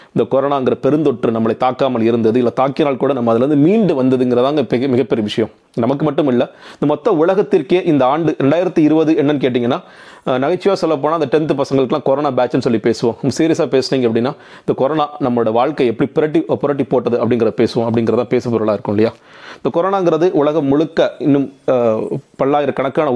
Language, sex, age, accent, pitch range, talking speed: Tamil, male, 30-49, native, 120-150 Hz, 155 wpm